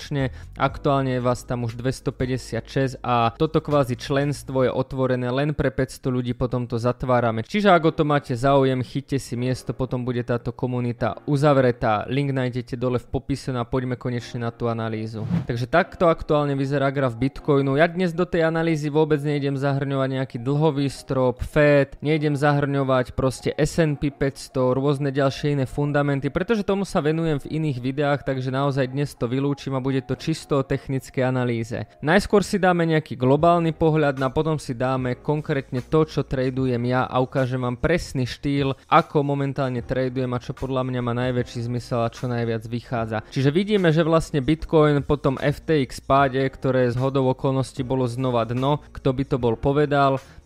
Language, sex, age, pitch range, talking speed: Slovak, male, 20-39, 125-145 Hz, 170 wpm